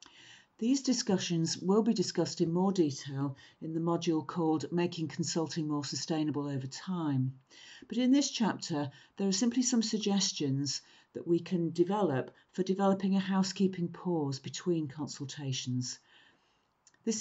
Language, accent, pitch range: English, British, 140-180 Hz